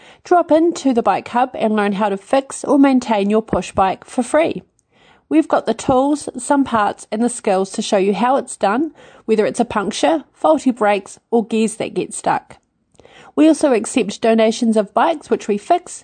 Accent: Australian